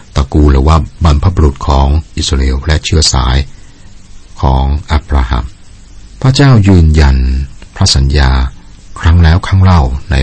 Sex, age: male, 60-79